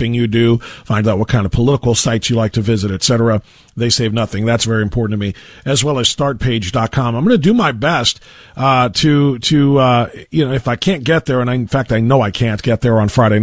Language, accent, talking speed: English, American, 245 wpm